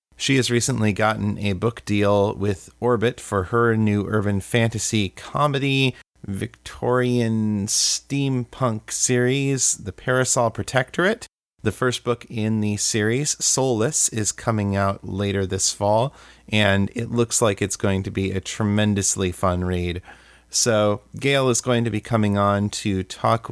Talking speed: 145 wpm